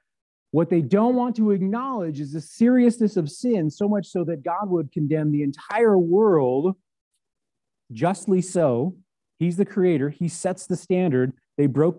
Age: 40-59